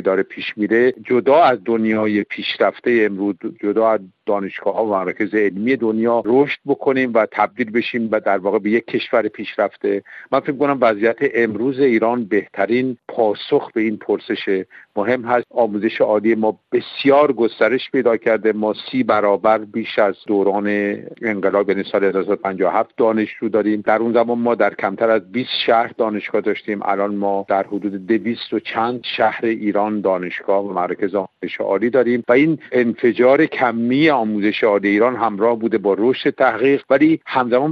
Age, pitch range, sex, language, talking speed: 50-69, 105-125 Hz, male, Persian, 155 wpm